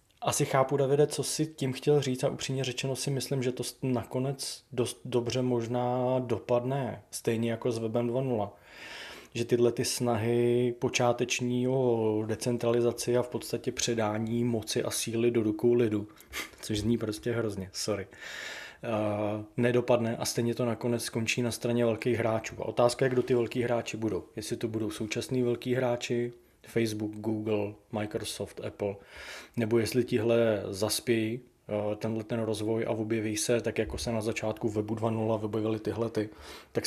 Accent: native